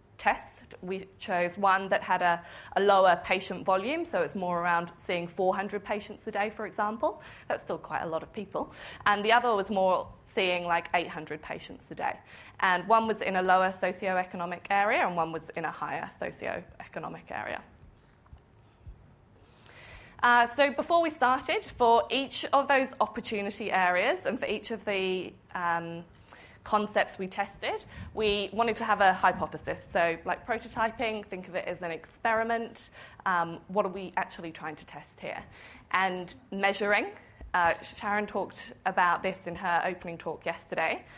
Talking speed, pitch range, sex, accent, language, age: 165 wpm, 175-215 Hz, female, British, English, 20-39